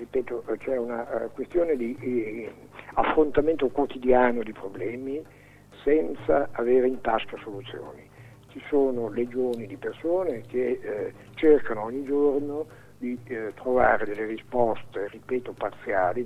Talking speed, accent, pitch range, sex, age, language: 105 wpm, native, 115-145 Hz, male, 60-79, Italian